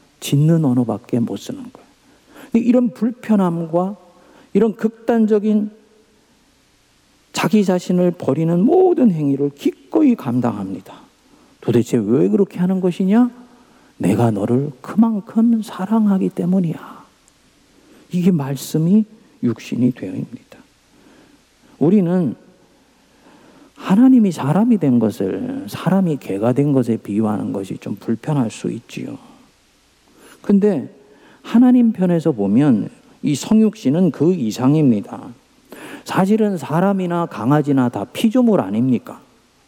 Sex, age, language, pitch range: male, 50-69, Korean, 155-240 Hz